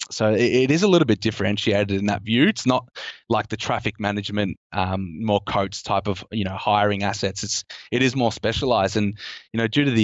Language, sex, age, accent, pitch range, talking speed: English, male, 20-39, Australian, 105-115 Hz, 215 wpm